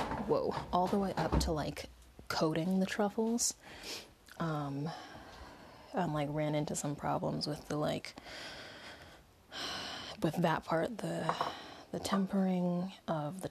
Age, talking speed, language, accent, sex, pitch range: 20-39, 125 wpm, English, American, female, 165-200 Hz